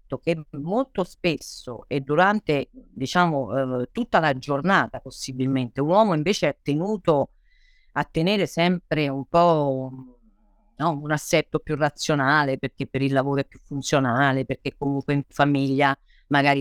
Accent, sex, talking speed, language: native, female, 135 wpm, Italian